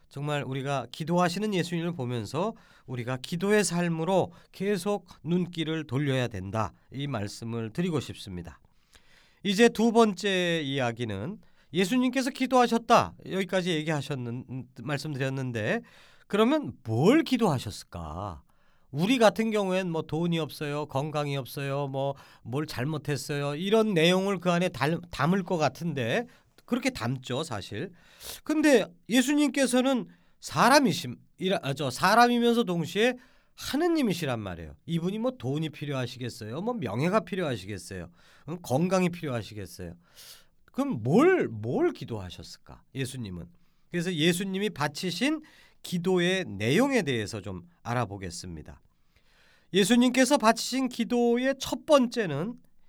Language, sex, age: Korean, male, 40-59